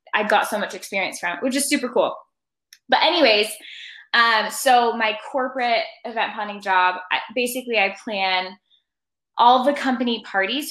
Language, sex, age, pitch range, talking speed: English, female, 10-29, 205-280 Hz, 150 wpm